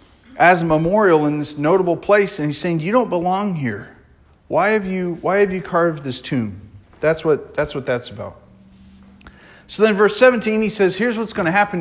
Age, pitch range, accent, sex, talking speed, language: 40-59, 125-190 Hz, American, male, 205 wpm, English